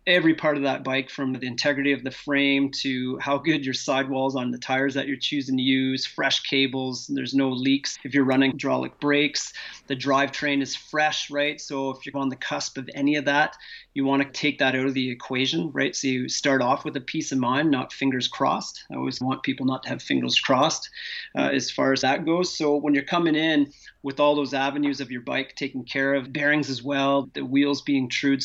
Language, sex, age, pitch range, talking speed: English, male, 30-49, 130-145 Hz, 230 wpm